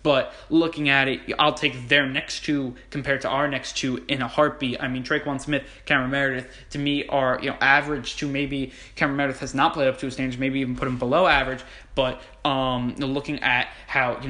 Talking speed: 230 wpm